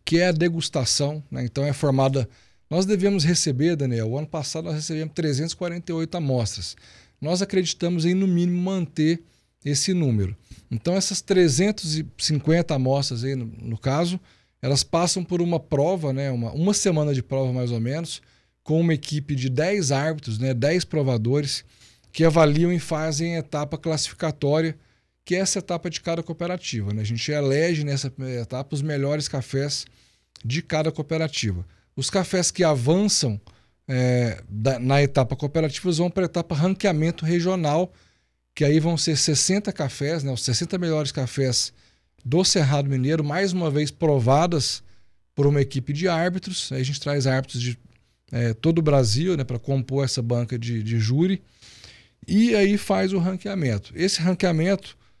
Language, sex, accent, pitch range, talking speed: Portuguese, male, Brazilian, 130-170 Hz, 155 wpm